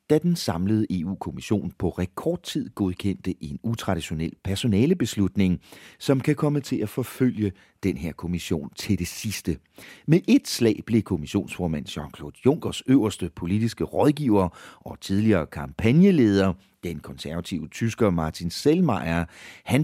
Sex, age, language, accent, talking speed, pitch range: male, 40-59, English, Danish, 130 wpm, 90-150 Hz